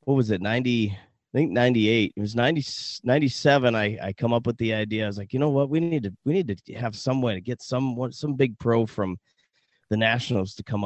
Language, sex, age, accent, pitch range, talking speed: English, male, 30-49, American, 105-125 Hz, 245 wpm